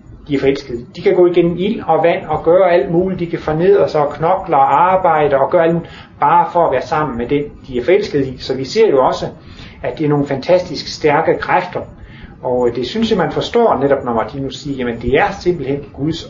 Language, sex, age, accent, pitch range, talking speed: Danish, male, 30-49, native, 125-170 Hz, 235 wpm